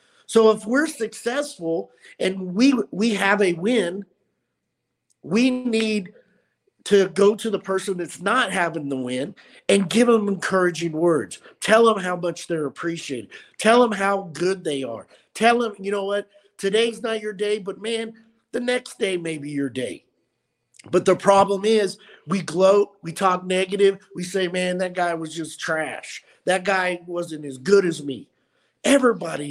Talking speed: 165 wpm